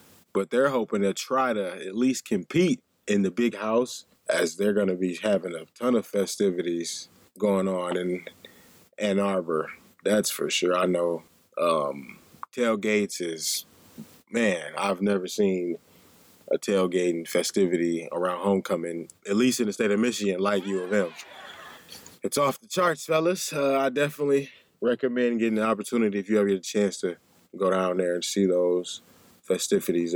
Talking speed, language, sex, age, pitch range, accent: 160 wpm, English, male, 20-39, 95-125 Hz, American